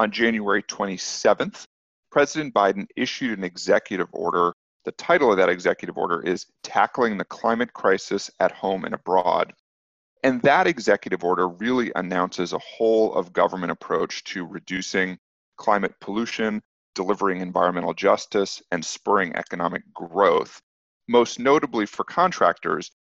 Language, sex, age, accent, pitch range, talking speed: English, male, 40-59, American, 90-115 Hz, 125 wpm